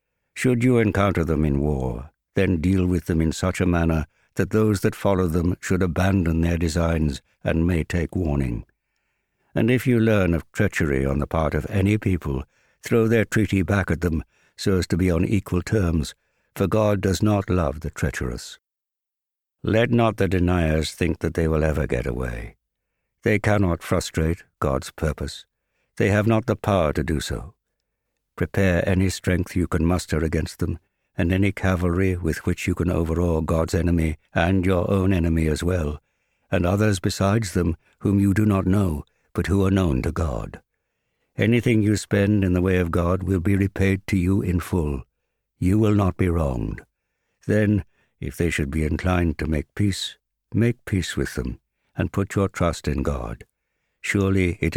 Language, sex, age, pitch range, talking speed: English, male, 60-79, 80-100 Hz, 180 wpm